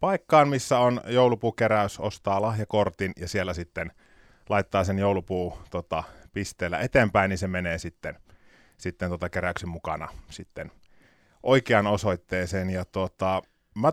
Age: 30-49